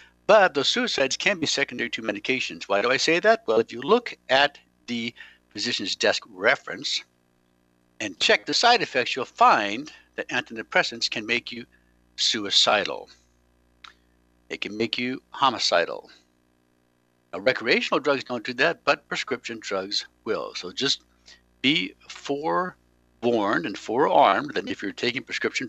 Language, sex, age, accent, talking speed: English, male, 60-79, American, 140 wpm